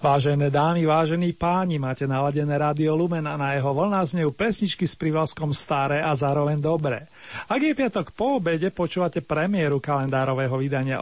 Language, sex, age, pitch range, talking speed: Slovak, male, 40-59, 145-185 Hz, 160 wpm